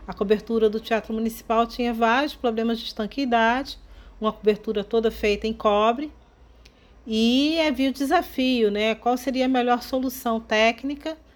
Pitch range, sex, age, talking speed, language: 210-250 Hz, female, 40-59, 145 wpm, Portuguese